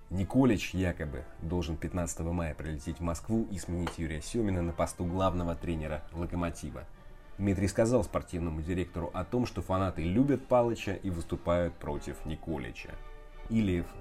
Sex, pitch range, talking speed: male, 80-100 Hz, 135 wpm